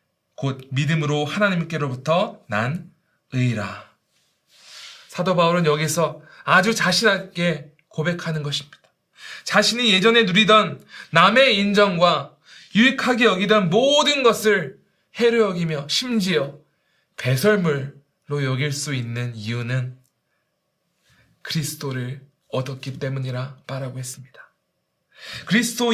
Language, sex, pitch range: Korean, male, 140-210 Hz